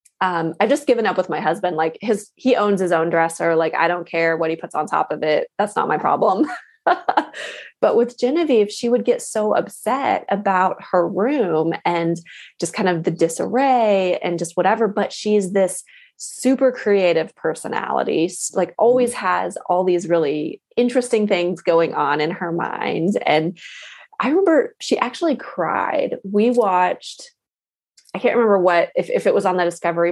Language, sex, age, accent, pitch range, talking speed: English, female, 20-39, American, 175-260 Hz, 175 wpm